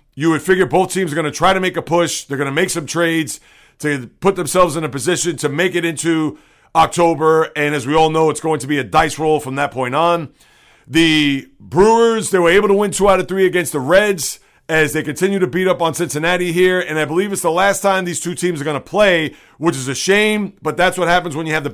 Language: English